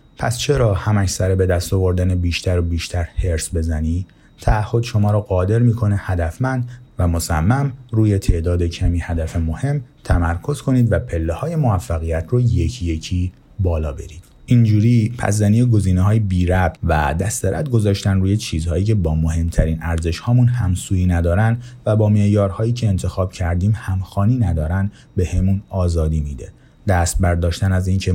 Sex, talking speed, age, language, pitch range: male, 145 wpm, 30-49, Persian, 85-110 Hz